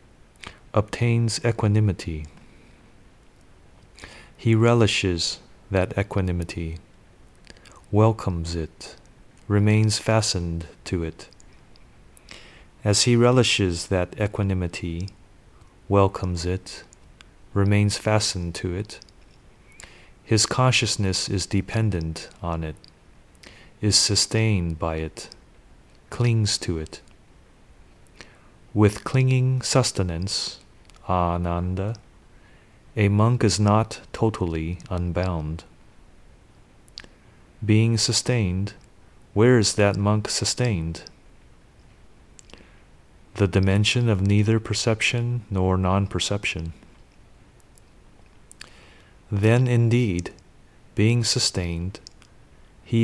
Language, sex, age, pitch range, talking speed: English, male, 30-49, 90-110 Hz, 75 wpm